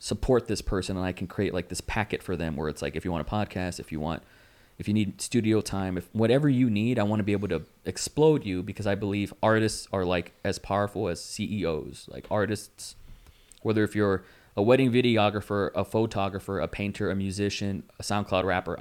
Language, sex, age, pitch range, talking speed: English, male, 20-39, 90-110 Hz, 215 wpm